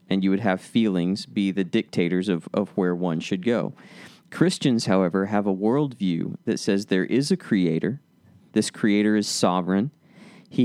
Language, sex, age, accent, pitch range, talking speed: English, male, 40-59, American, 95-125 Hz, 170 wpm